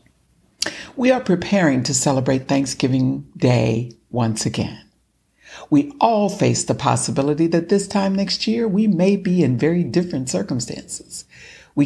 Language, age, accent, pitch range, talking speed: English, 60-79, American, 125-190 Hz, 135 wpm